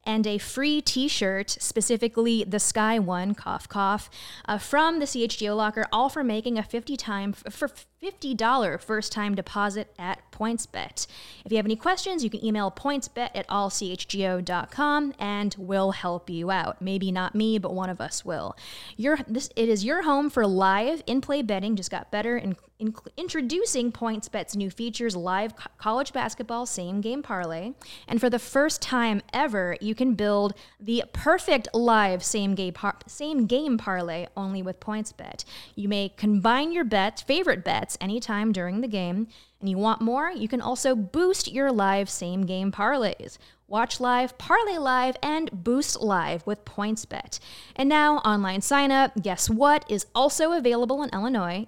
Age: 20-39